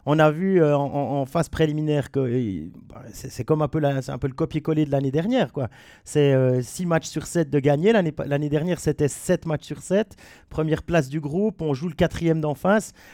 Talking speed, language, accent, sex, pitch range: 240 wpm, French, French, male, 135-175 Hz